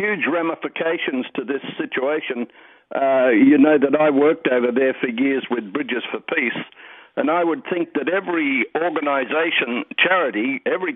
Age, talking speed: 60-79, 155 wpm